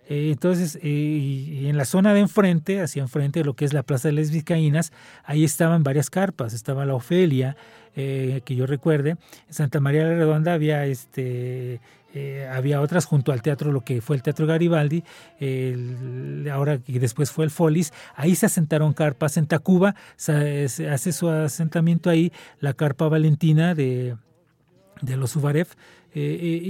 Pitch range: 140-170 Hz